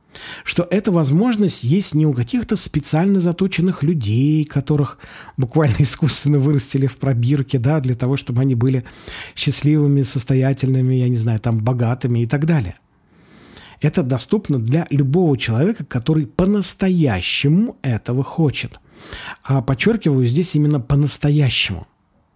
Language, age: Russian, 40-59